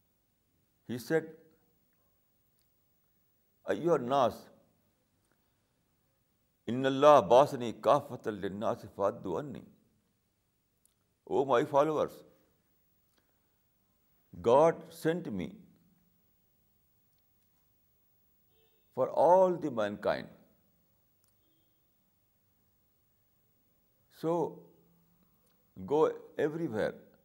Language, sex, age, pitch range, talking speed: Urdu, male, 60-79, 95-135 Hz, 55 wpm